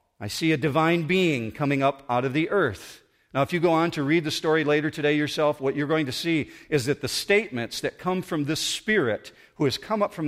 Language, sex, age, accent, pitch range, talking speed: English, male, 50-69, American, 140-175 Hz, 245 wpm